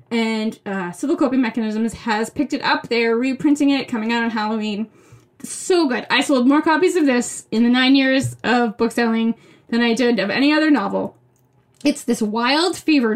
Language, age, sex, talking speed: English, 10-29, female, 185 wpm